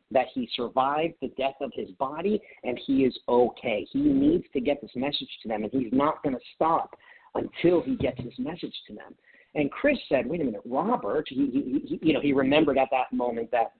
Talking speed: 220 wpm